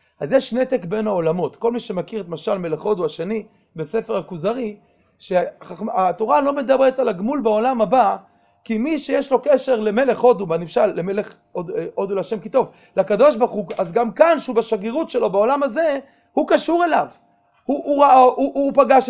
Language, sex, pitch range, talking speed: Hebrew, male, 200-255 Hz, 170 wpm